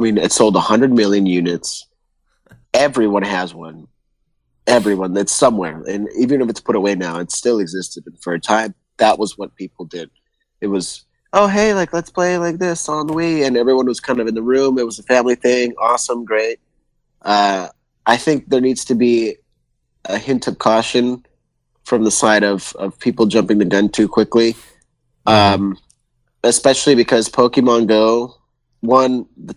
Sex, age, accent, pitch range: male, 30-49, American, 95-120 Hz